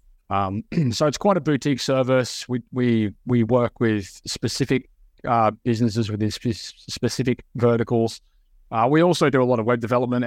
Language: English